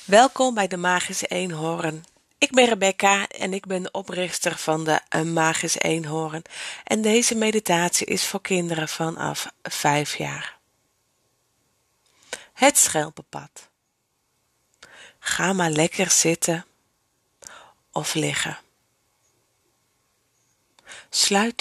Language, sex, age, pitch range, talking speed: Dutch, female, 40-59, 165-200 Hz, 95 wpm